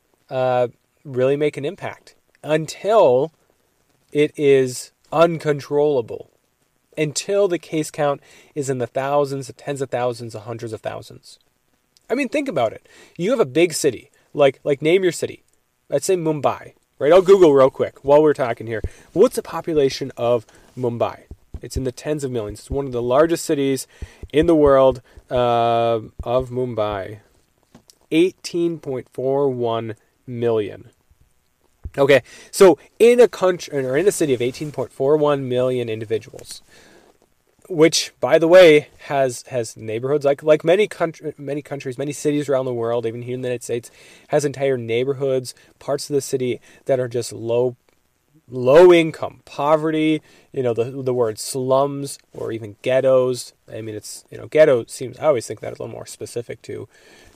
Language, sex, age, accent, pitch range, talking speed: English, male, 30-49, American, 120-150 Hz, 165 wpm